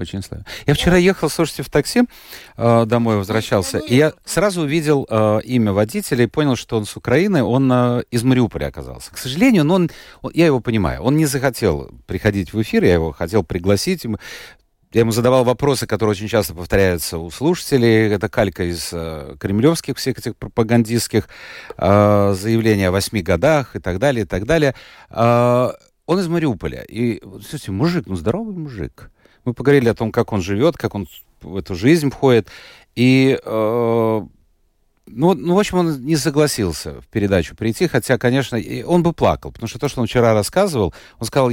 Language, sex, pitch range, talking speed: Russian, male, 100-140 Hz, 180 wpm